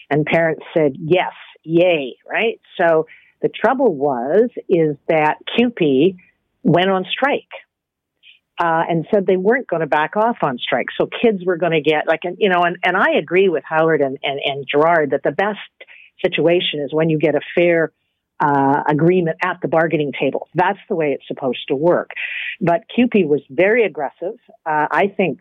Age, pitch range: 50-69, 150-185 Hz